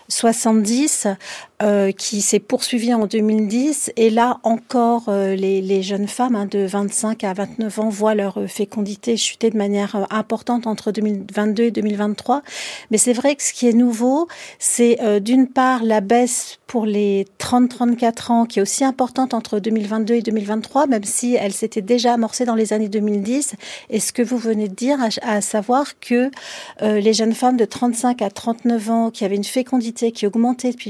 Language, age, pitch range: French, 50-69, 205-240 Hz